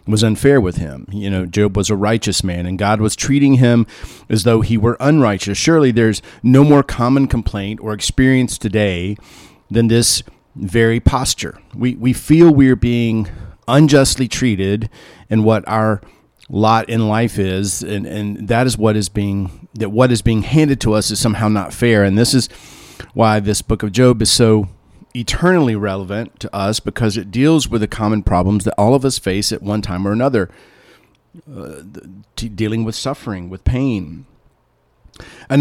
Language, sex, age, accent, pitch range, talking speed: English, male, 40-59, American, 105-125 Hz, 175 wpm